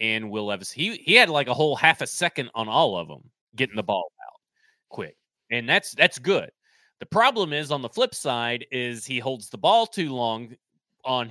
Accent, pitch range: American, 125-175 Hz